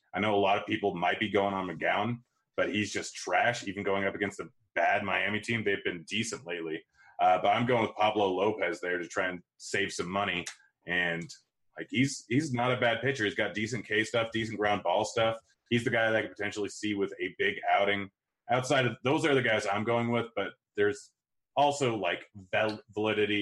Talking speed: 220 wpm